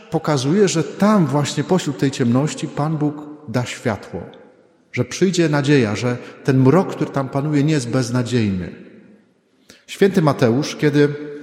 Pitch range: 125-155 Hz